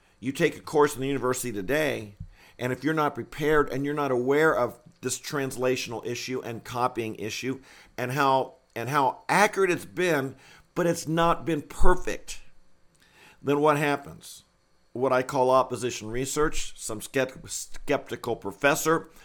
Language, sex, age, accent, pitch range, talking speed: English, male, 50-69, American, 125-160 Hz, 150 wpm